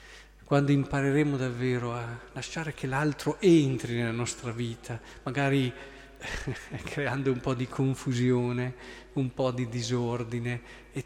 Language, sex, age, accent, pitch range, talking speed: Italian, male, 40-59, native, 120-150 Hz, 120 wpm